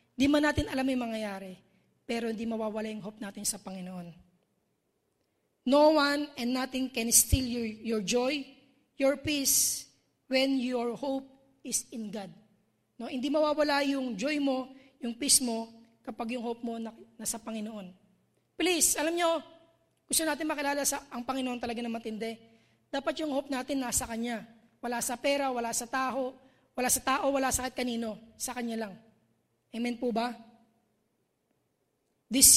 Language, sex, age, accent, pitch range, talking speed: English, female, 20-39, Filipino, 220-265 Hz, 155 wpm